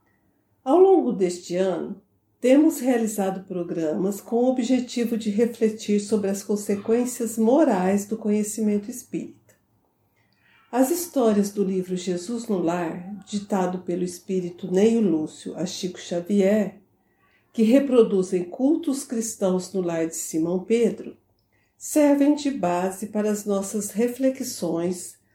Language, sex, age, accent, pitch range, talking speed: Portuguese, female, 60-79, Brazilian, 185-240 Hz, 120 wpm